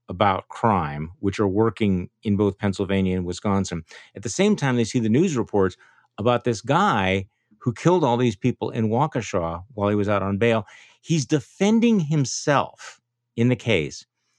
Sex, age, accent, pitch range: male, 50-69, American, 95-125 Hz